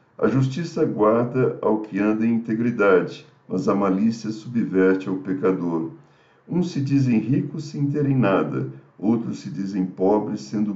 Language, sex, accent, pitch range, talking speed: Portuguese, male, Brazilian, 95-130 Hz, 145 wpm